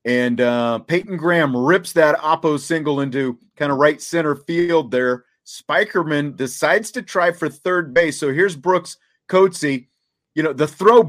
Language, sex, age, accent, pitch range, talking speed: English, male, 40-59, American, 130-170 Hz, 160 wpm